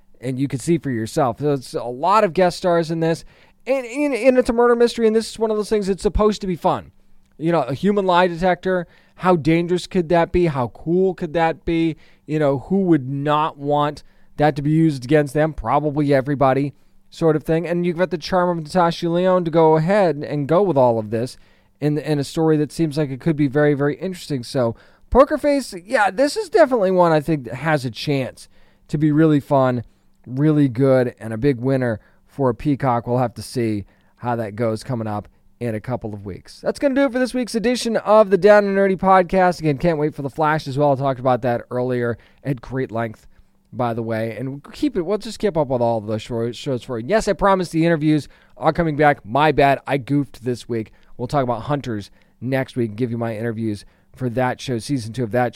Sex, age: male, 20-39